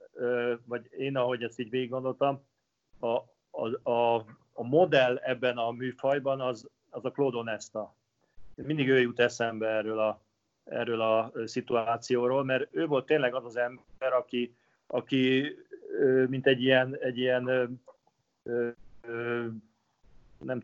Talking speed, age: 130 wpm, 30-49